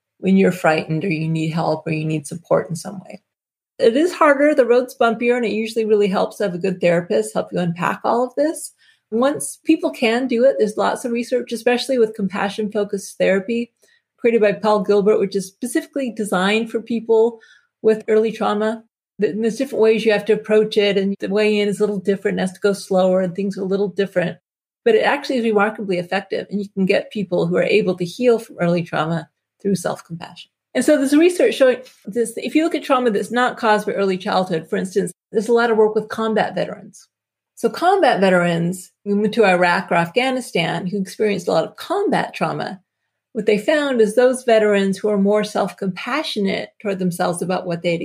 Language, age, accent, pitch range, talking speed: English, 40-59, American, 190-235 Hz, 210 wpm